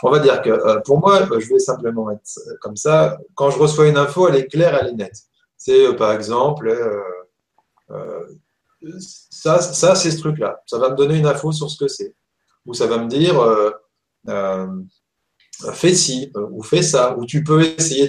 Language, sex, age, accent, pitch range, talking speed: French, male, 30-49, French, 135-190 Hz, 200 wpm